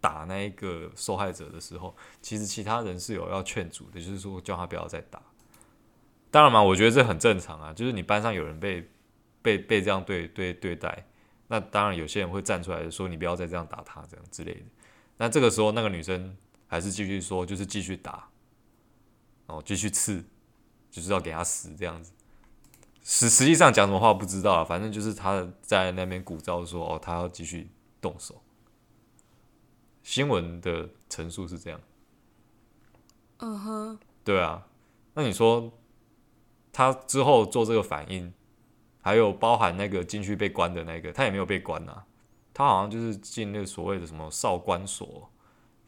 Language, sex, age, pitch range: Chinese, male, 20-39, 90-115 Hz